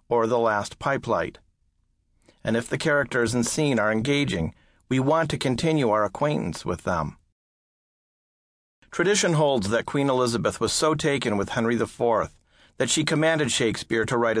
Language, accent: English, American